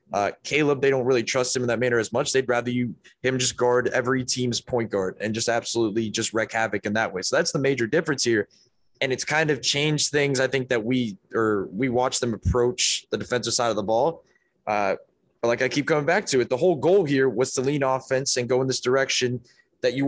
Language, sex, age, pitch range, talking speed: English, male, 20-39, 120-145 Hz, 245 wpm